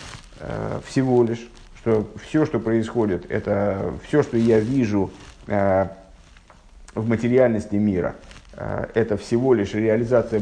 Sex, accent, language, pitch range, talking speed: male, native, Russian, 105-150 Hz, 115 wpm